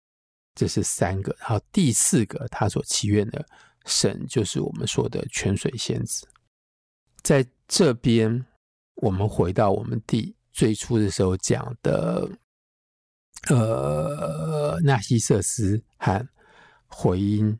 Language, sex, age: Chinese, male, 50-69